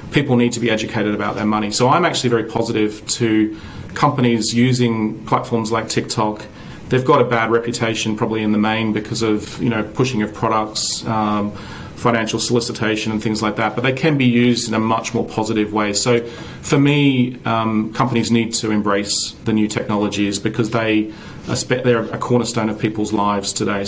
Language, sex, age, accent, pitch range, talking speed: English, male, 30-49, Australian, 105-120 Hz, 185 wpm